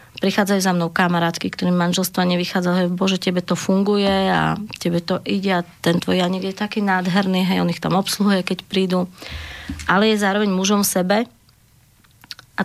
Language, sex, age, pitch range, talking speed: Slovak, female, 30-49, 165-195 Hz, 170 wpm